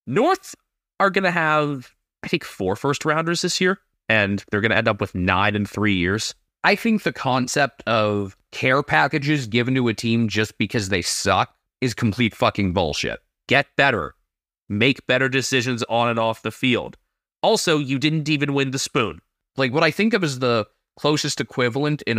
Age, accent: 30-49, American